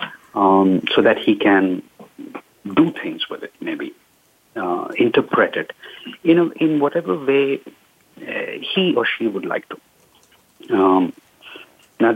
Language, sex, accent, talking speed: English, male, Indian, 140 wpm